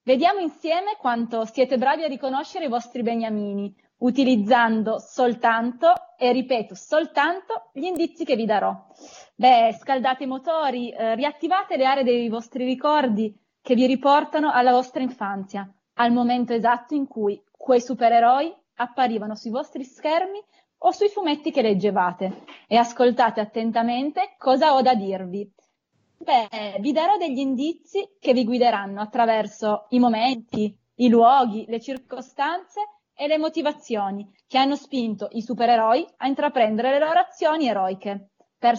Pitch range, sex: 225-295 Hz, female